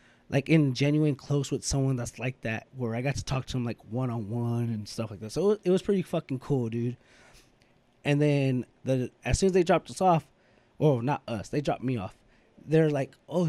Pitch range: 125-160 Hz